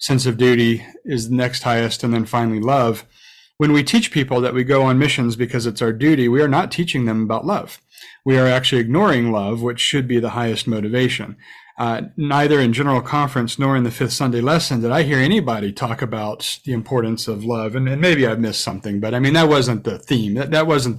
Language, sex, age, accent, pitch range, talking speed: English, male, 40-59, American, 115-140 Hz, 225 wpm